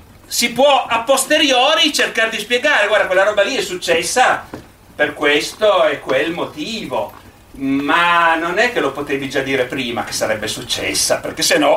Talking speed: 170 wpm